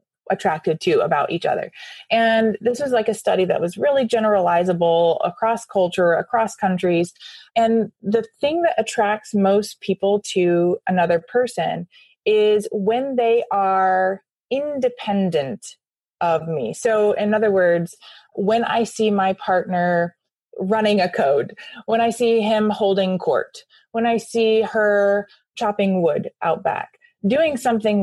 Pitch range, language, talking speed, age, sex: 185-235 Hz, English, 135 wpm, 20-39, female